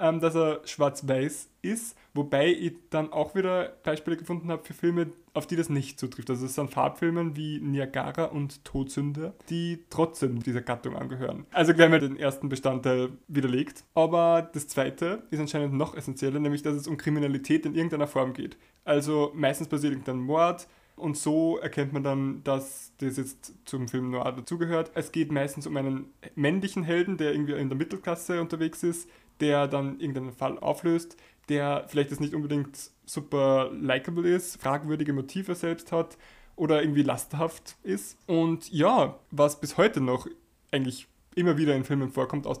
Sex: male